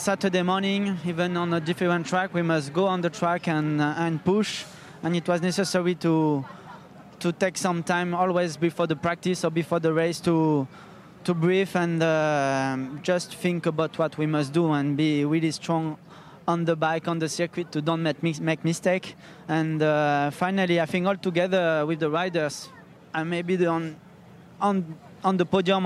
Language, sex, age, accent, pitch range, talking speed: English, male, 20-39, French, 160-185 Hz, 185 wpm